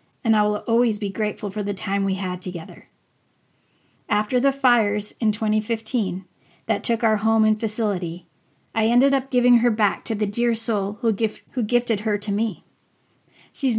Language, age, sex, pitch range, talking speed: English, 40-59, female, 210-245 Hz, 175 wpm